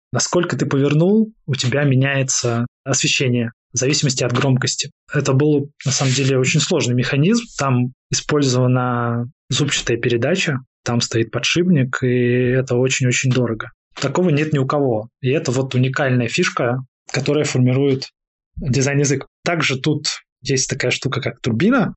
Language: Russian